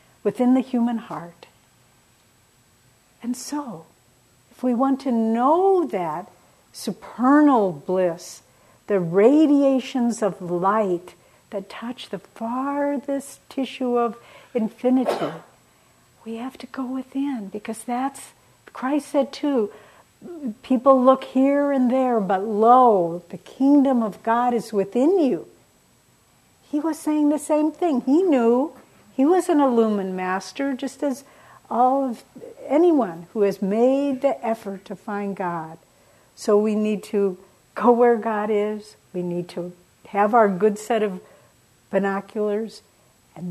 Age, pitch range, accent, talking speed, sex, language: 60-79, 190-260 Hz, American, 130 wpm, female, English